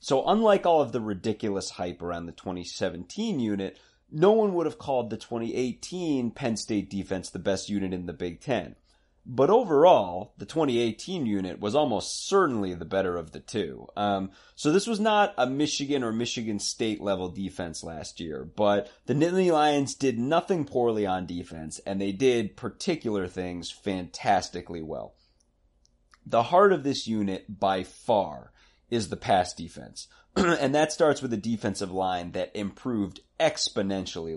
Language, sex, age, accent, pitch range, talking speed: English, male, 30-49, American, 95-130 Hz, 160 wpm